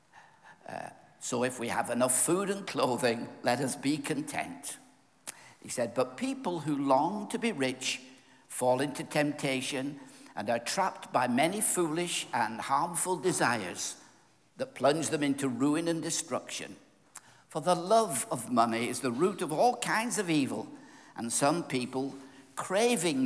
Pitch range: 130-190 Hz